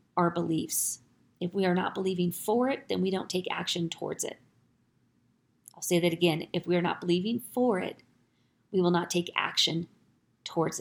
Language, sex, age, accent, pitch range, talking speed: English, female, 30-49, American, 170-190 Hz, 185 wpm